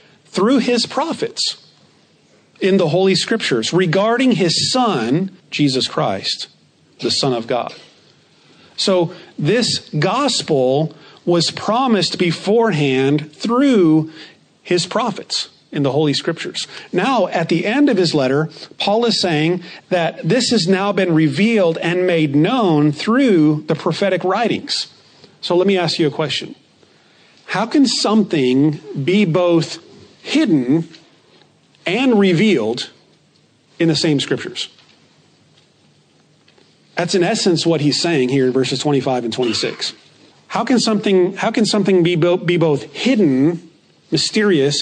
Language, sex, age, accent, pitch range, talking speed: English, male, 40-59, American, 155-200 Hz, 125 wpm